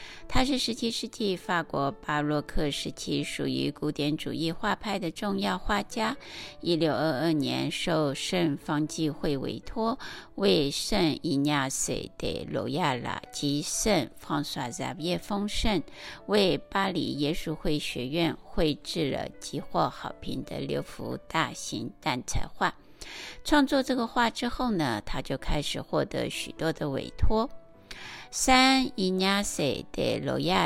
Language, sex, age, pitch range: Chinese, female, 60-79, 150-225 Hz